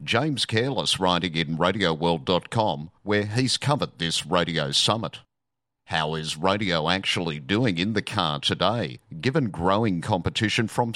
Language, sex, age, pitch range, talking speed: English, male, 50-69, 85-105 Hz, 130 wpm